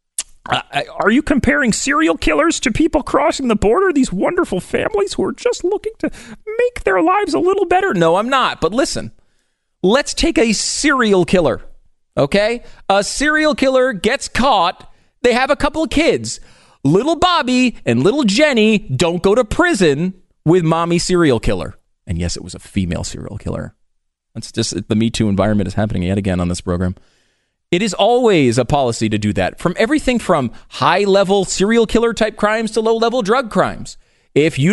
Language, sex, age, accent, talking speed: English, male, 30-49, American, 180 wpm